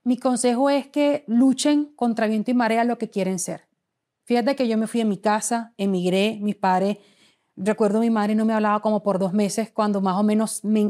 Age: 30-49